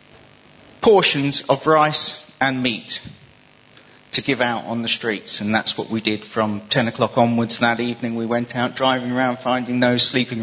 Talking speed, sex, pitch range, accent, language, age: 175 wpm, male, 115-145 Hz, British, English, 40-59